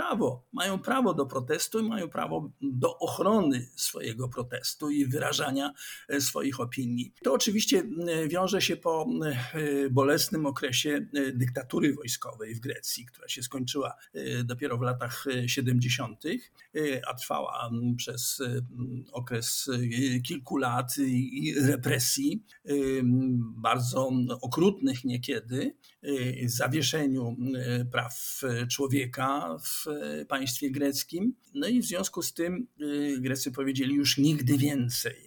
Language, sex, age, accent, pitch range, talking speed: Polish, male, 50-69, native, 125-145 Hz, 100 wpm